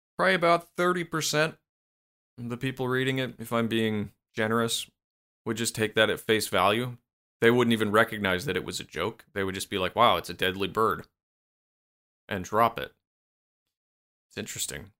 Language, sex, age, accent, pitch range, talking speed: English, male, 30-49, American, 85-115 Hz, 170 wpm